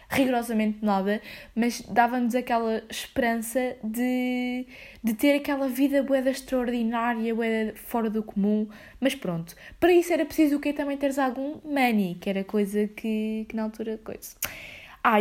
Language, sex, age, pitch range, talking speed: Portuguese, female, 20-39, 210-250 Hz, 145 wpm